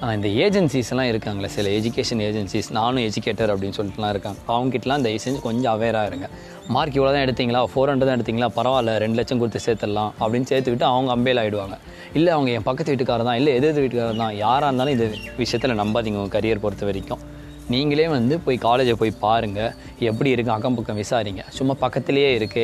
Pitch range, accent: 105-130 Hz, native